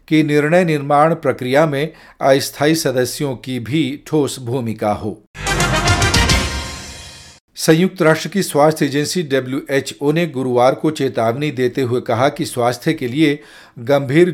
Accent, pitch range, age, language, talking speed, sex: native, 125-160 Hz, 50-69, Hindi, 125 wpm, male